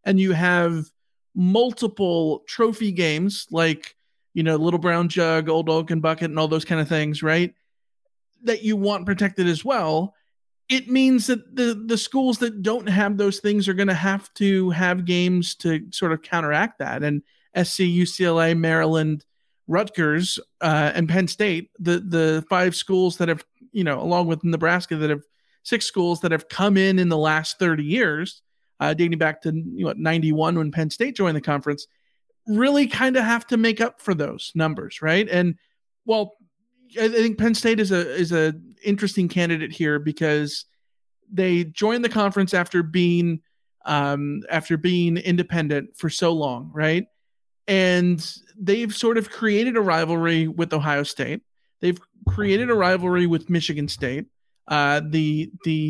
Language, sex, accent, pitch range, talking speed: English, male, American, 160-205 Hz, 165 wpm